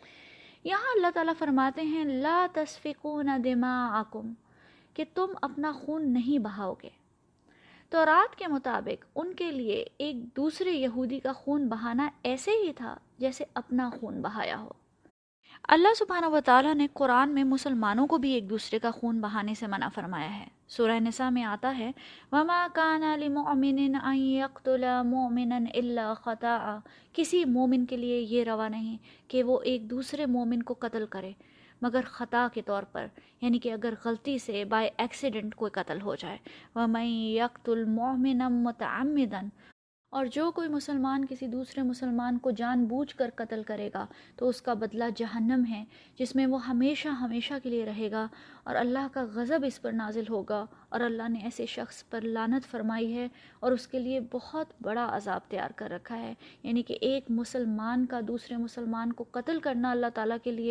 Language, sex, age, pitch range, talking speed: Urdu, female, 20-39, 230-275 Hz, 170 wpm